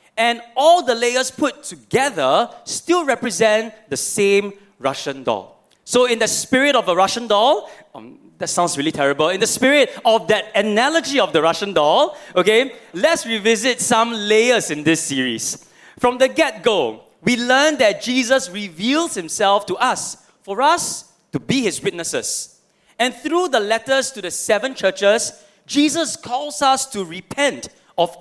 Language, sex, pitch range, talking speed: English, male, 195-270 Hz, 155 wpm